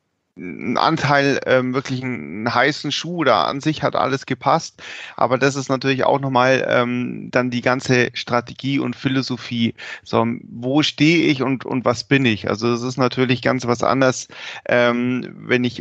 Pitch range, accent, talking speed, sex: 120-130 Hz, German, 170 wpm, male